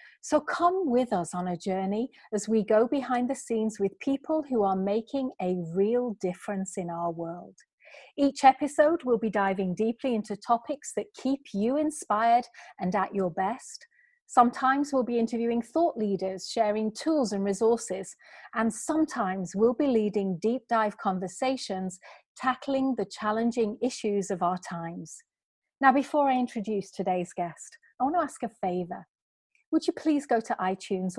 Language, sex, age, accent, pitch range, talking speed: English, female, 40-59, British, 195-260 Hz, 160 wpm